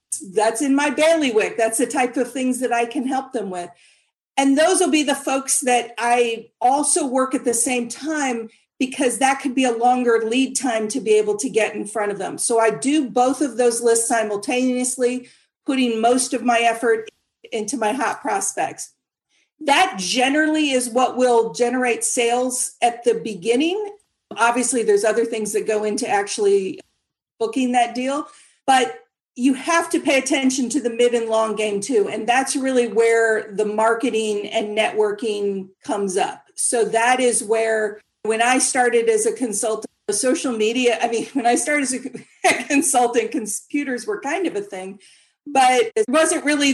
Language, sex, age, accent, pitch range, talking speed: English, female, 50-69, American, 225-275 Hz, 175 wpm